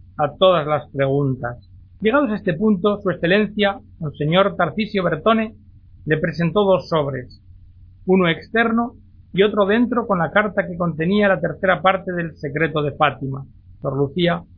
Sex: male